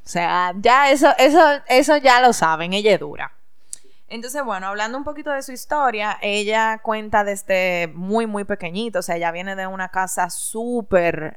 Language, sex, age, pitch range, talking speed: Spanish, female, 20-39, 180-225 Hz, 180 wpm